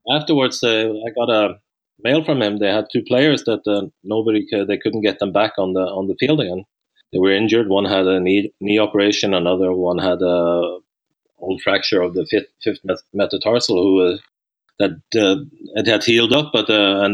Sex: male